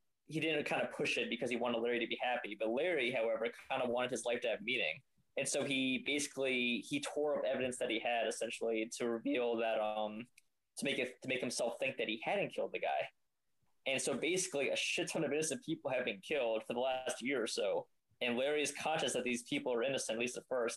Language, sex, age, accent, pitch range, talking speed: English, male, 20-39, American, 120-175 Hz, 245 wpm